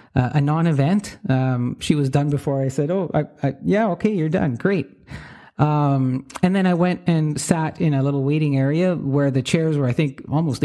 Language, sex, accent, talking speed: English, male, American, 190 wpm